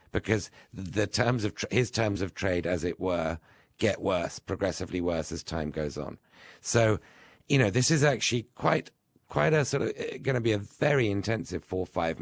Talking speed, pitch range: 195 wpm, 85-100 Hz